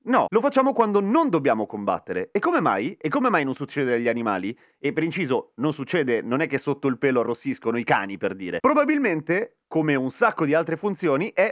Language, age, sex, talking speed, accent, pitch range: Italian, 30-49, male, 215 wpm, native, 130-180 Hz